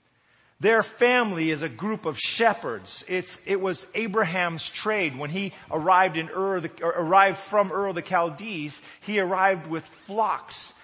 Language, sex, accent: English, male, American